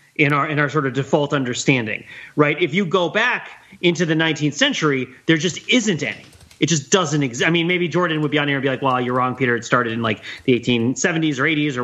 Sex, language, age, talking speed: male, English, 30-49, 250 wpm